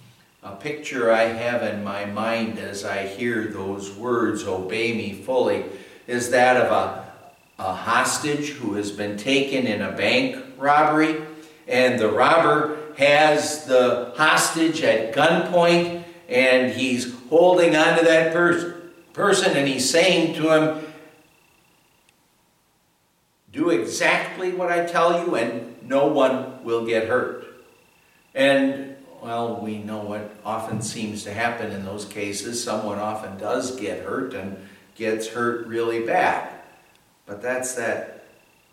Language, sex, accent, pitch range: English, male, American, 110-155 Hz